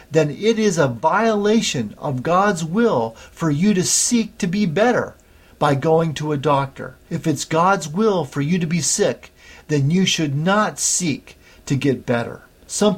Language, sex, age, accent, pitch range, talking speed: English, male, 50-69, American, 125-185 Hz, 175 wpm